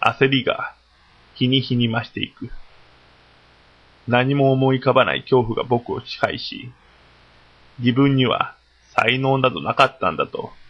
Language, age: Japanese, 20-39